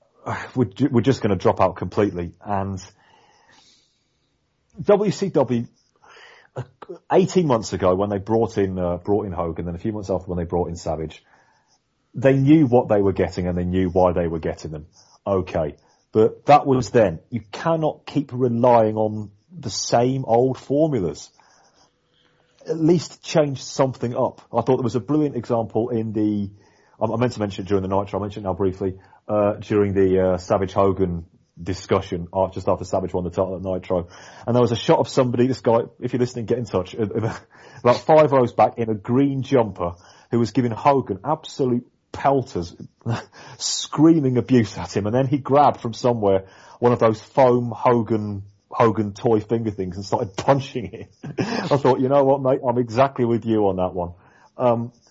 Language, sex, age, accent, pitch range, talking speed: English, male, 30-49, British, 95-130 Hz, 180 wpm